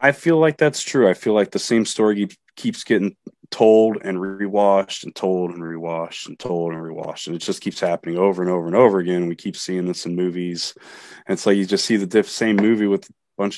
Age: 20-39